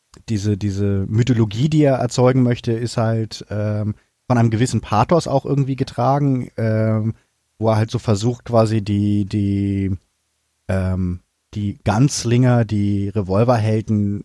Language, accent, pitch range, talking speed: German, German, 100-115 Hz, 130 wpm